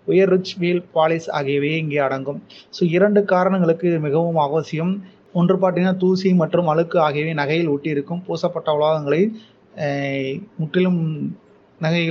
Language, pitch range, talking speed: English, 160-200 Hz, 150 wpm